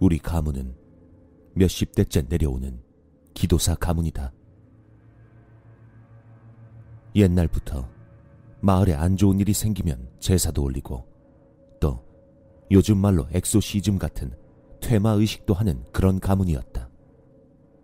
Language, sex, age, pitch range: Korean, male, 40-59, 80-105 Hz